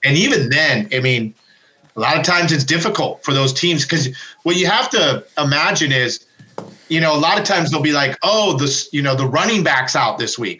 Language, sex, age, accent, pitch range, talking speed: English, male, 40-59, American, 130-160 Hz, 225 wpm